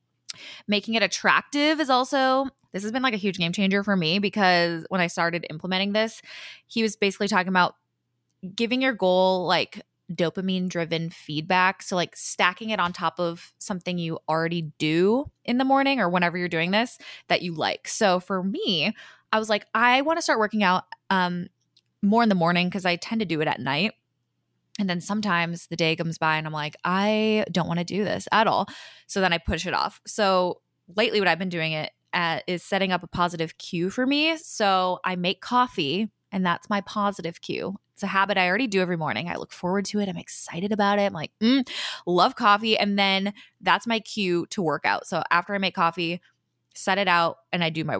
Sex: female